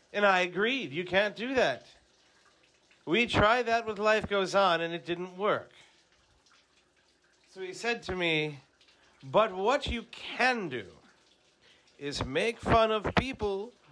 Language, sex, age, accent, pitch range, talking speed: English, male, 50-69, American, 150-215 Hz, 140 wpm